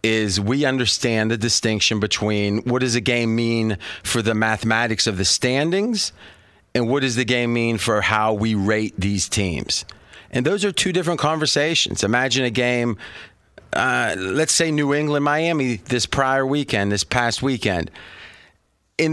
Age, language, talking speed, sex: 30-49, English, 155 wpm, male